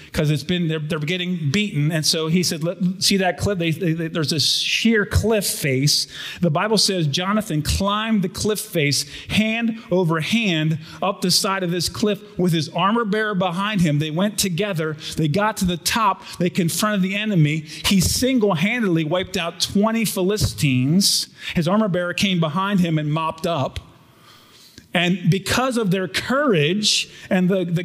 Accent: American